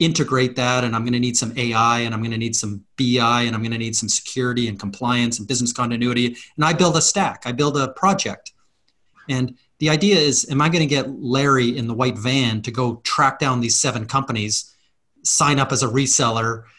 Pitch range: 120-150 Hz